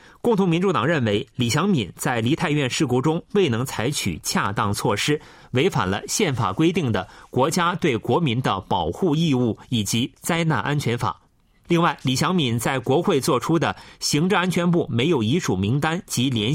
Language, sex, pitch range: Chinese, male, 120-175 Hz